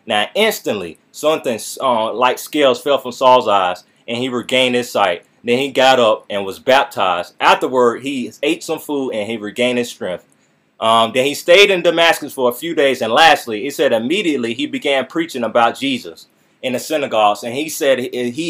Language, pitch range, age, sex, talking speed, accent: English, 130-170 Hz, 30-49, male, 190 wpm, American